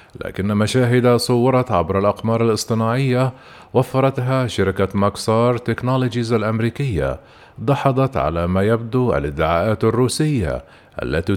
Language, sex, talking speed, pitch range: Arabic, male, 95 wpm, 110-130 Hz